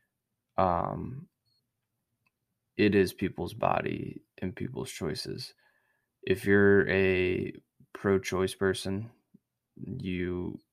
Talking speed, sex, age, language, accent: 80 wpm, male, 20-39, English, American